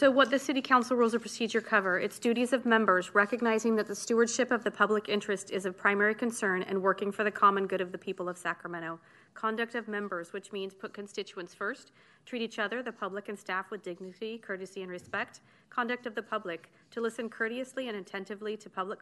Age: 30-49